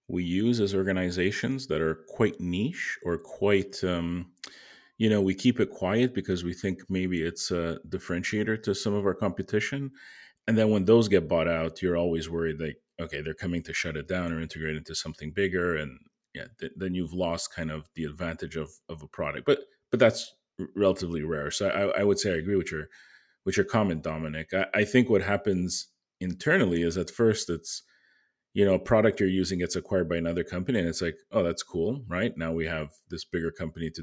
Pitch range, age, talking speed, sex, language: 85-100 Hz, 40-59, 215 wpm, male, English